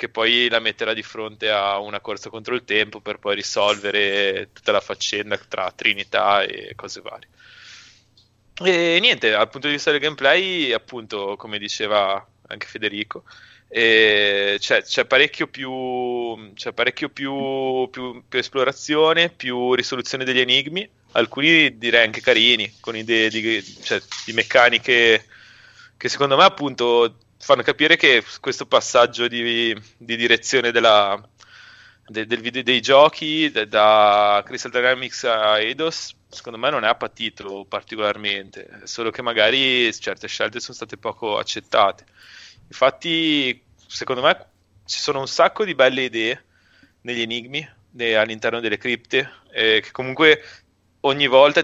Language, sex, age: Italian, male, 20-39